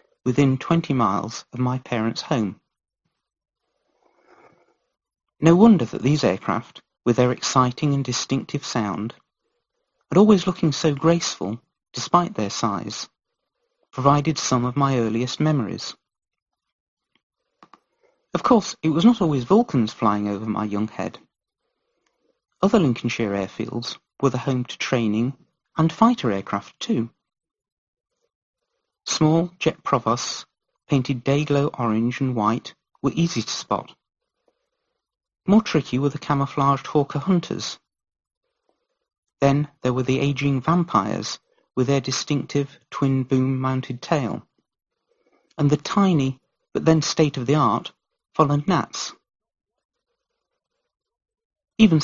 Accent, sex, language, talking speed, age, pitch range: British, male, English, 110 wpm, 40-59, 125-185 Hz